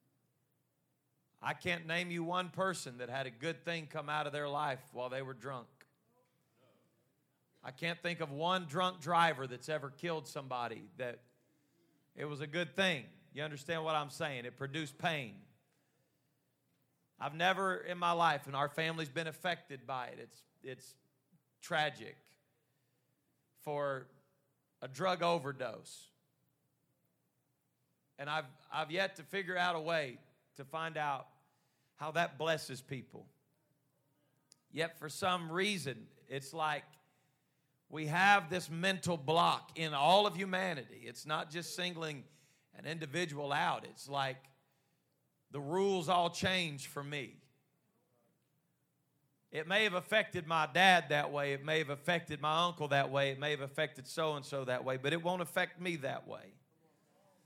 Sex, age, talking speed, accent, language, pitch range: male, 40-59, 145 wpm, American, English, 140-170 Hz